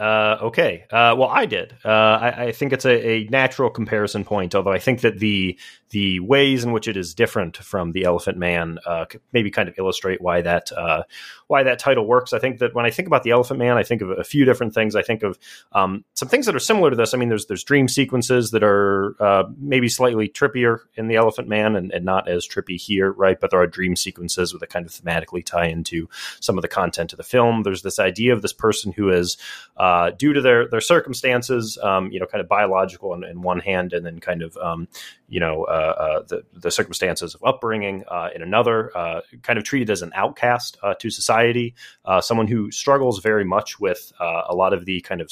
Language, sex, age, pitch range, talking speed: English, male, 30-49, 95-120 Hz, 235 wpm